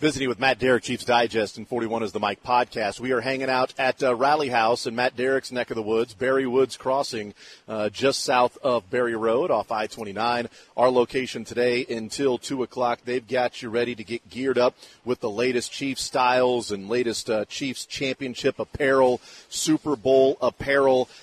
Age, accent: 40-59, American